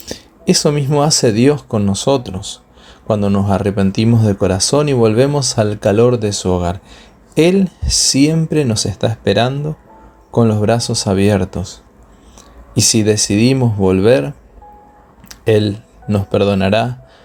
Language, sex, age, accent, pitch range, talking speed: Spanish, male, 20-39, Argentinian, 95-125 Hz, 120 wpm